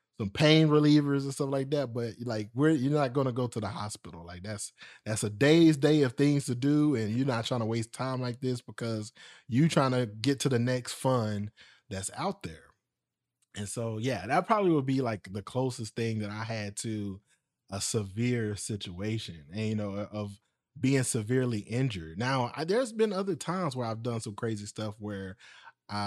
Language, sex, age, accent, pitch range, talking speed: English, male, 20-39, American, 105-140 Hz, 205 wpm